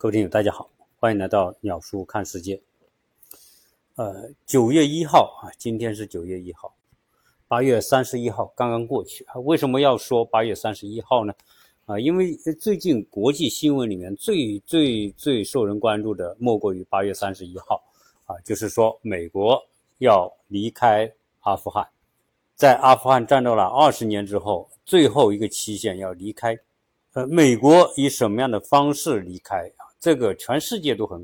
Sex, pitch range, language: male, 100-145 Hz, Chinese